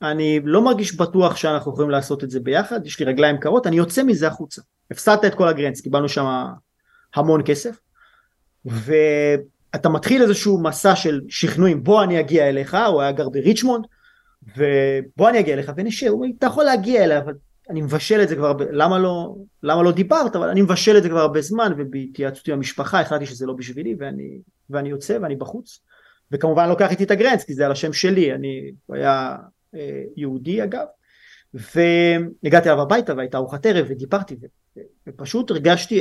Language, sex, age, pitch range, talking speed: Hebrew, male, 30-49, 145-200 Hz, 150 wpm